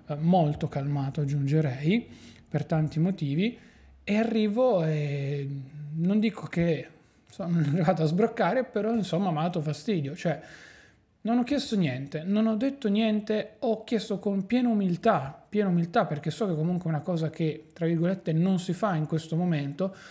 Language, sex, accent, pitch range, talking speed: Italian, male, native, 150-195 Hz, 160 wpm